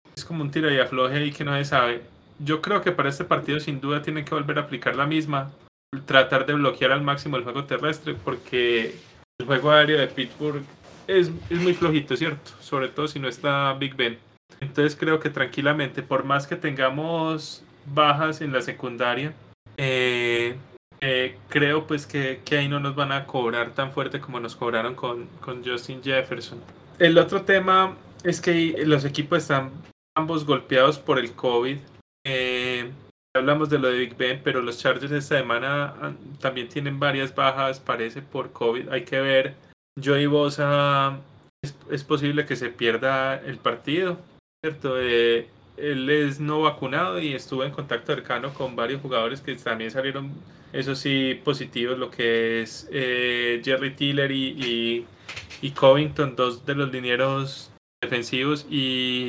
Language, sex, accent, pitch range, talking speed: Spanish, male, Colombian, 125-150 Hz, 170 wpm